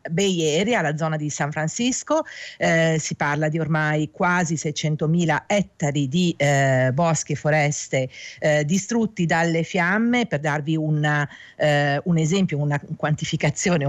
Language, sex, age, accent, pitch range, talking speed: Italian, female, 50-69, native, 150-195 Hz, 135 wpm